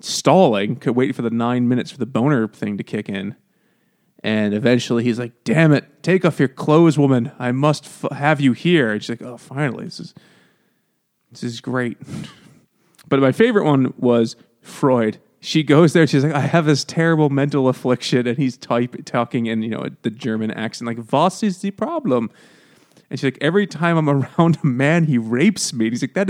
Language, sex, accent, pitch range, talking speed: English, male, American, 125-190 Hz, 205 wpm